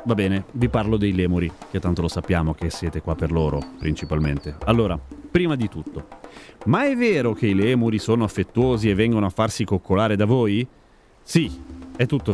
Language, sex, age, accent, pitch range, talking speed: Italian, male, 30-49, native, 90-125 Hz, 185 wpm